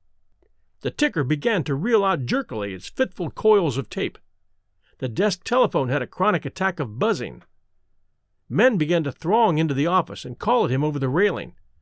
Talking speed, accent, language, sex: 180 wpm, American, English, male